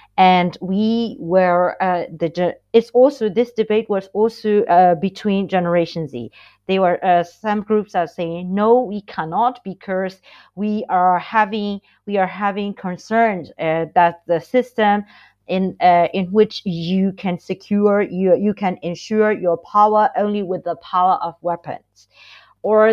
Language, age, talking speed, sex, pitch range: English, 40-59, 150 wpm, female, 180-215 Hz